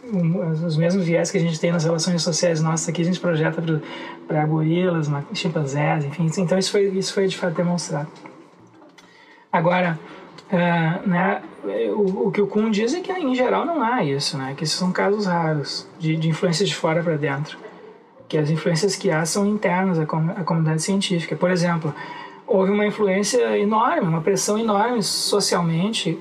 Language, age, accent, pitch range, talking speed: Portuguese, 20-39, Brazilian, 165-210 Hz, 180 wpm